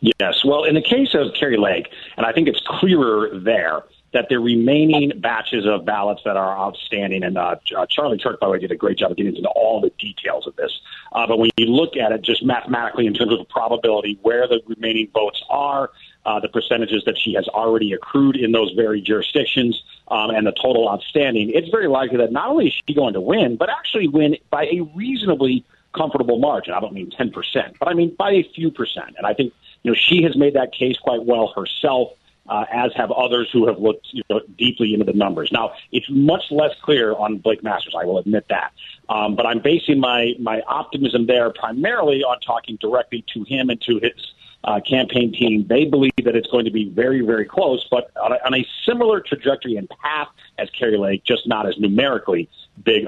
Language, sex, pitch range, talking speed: English, male, 110-150 Hz, 220 wpm